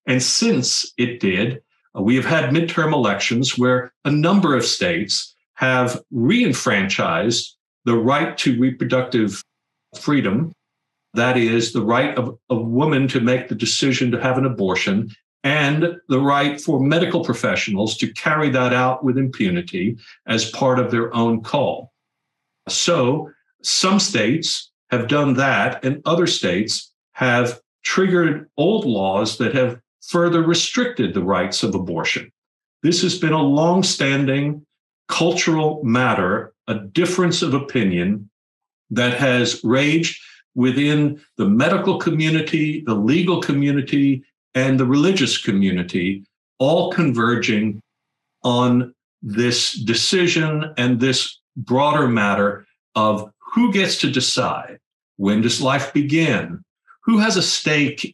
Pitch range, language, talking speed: 120-160 Hz, English, 125 wpm